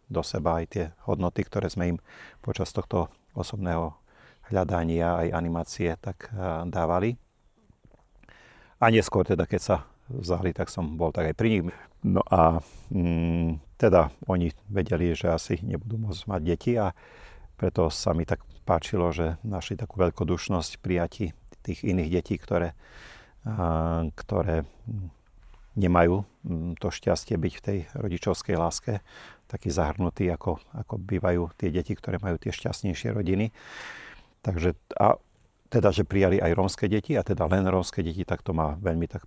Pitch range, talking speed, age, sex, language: 85-100 Hz, 145 wpm, 40-59, male, Slovak